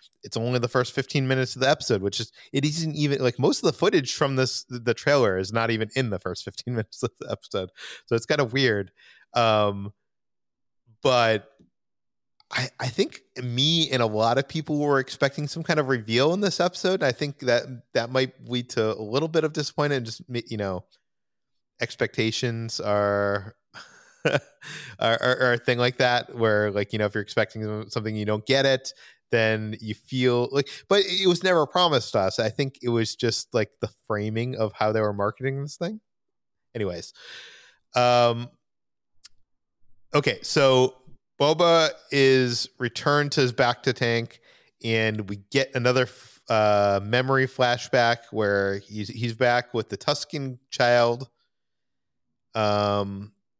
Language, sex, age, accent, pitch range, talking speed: English, male, 30-49, American, 110-135 Hz, 170 wpm